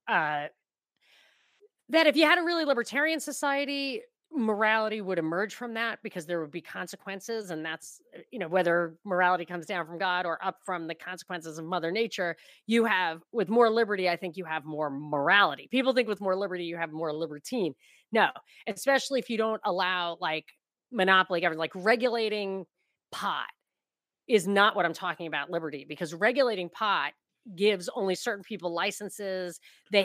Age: 30-49